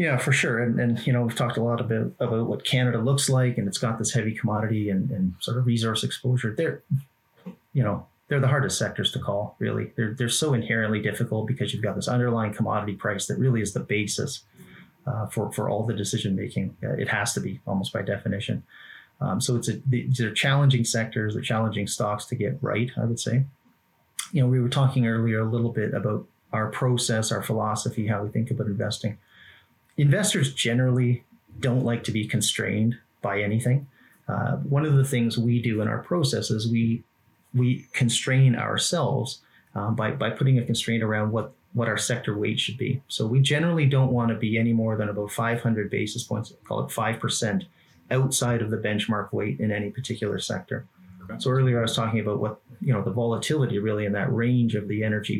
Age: 30-49